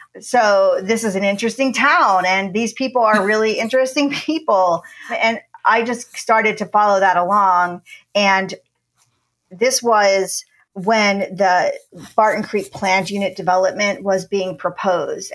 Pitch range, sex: 190-225 Hz, female